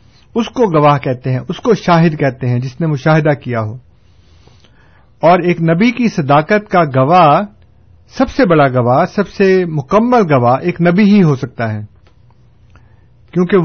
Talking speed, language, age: 165 wpm, Urdu, 50-69